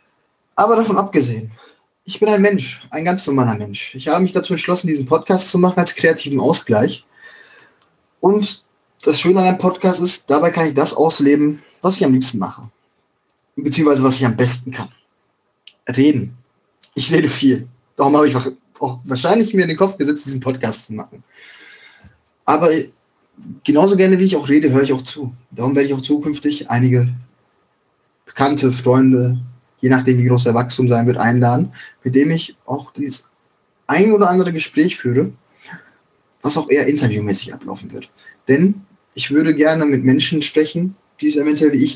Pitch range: 125-165 Hz